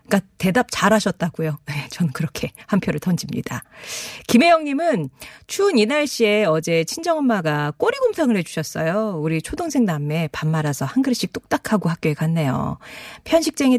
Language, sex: Korean, female